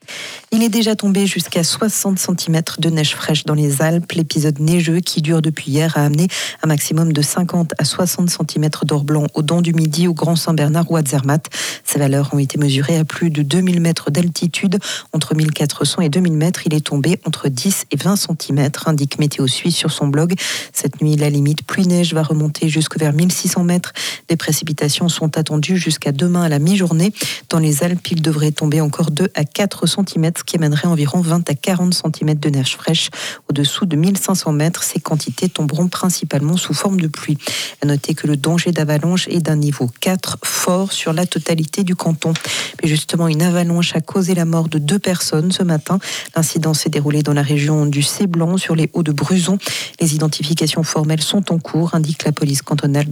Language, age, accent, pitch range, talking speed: French, 40-59, French, 150-175 Hz, 195 wpm